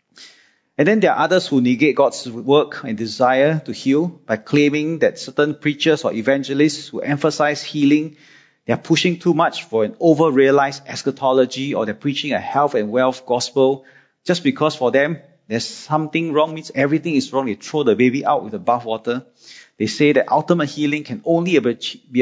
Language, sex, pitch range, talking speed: English, male, 130-165 Hz, 180 wpm